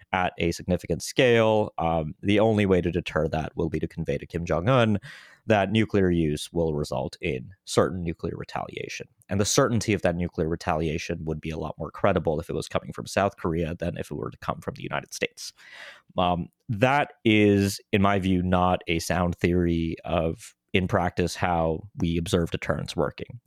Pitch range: 85-100 Hz